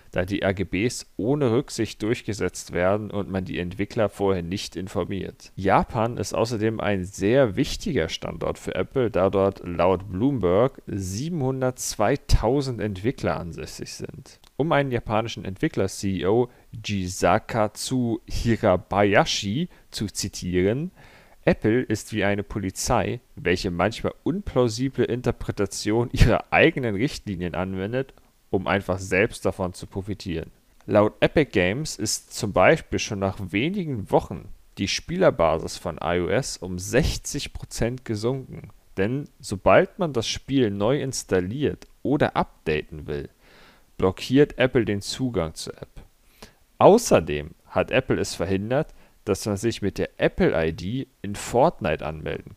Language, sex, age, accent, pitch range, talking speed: German, male, 40-59, German, 95-120 Hz, 120 wpm